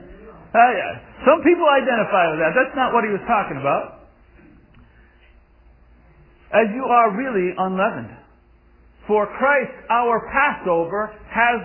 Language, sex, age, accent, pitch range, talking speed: English, male, 50-69, American, 175-260 Hz, 120 wpm